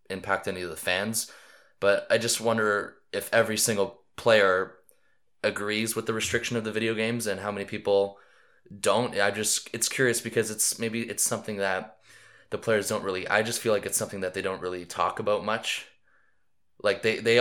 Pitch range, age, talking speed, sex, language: 95-115 Hz, 20-39, 195 wpm, male, English